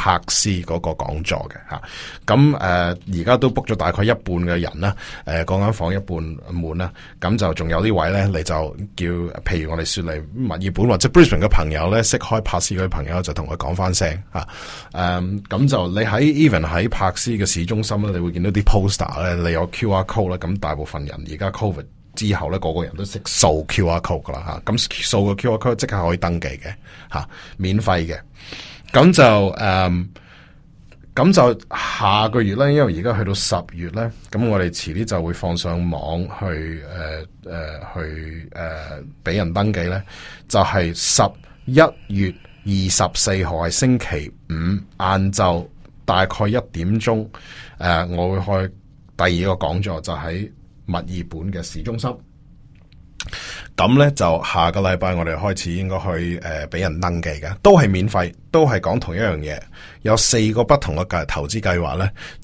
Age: 30-49